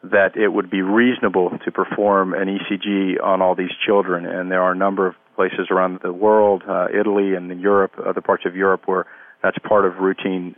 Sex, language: male, English